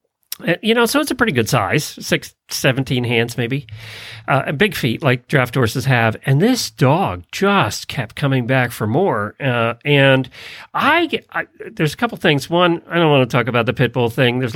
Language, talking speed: English, 200 wpm